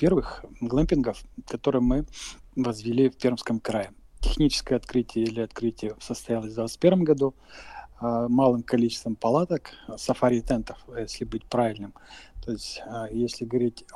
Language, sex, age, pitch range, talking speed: Russian, male, 50-69, 115-135 Hz, 115 wpm